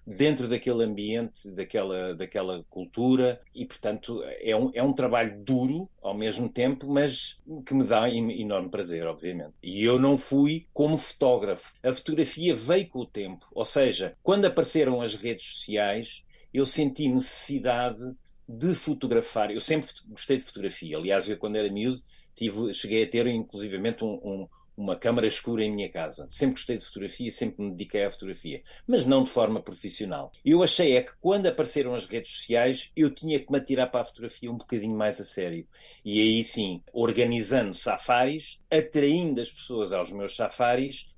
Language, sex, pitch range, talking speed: Portuguese, male, 110-135 Hz, 170 wpm